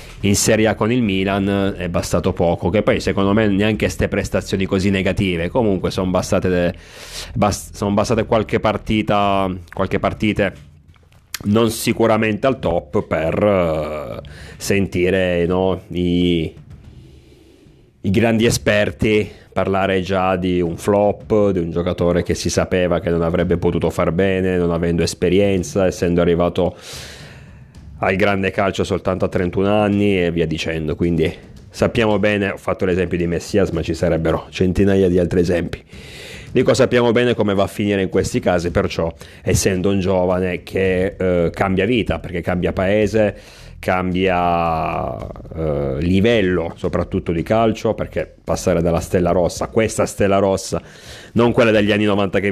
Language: Italian